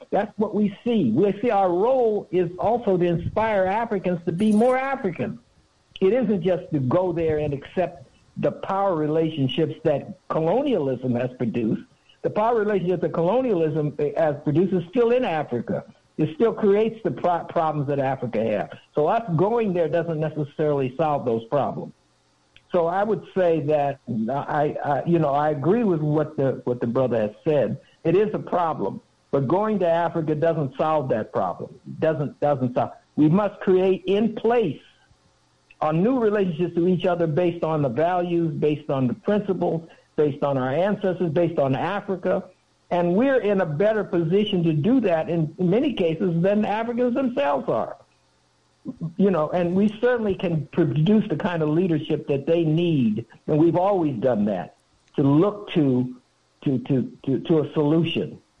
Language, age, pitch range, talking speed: English, 60-79, 150-195 Hz, 170 wpm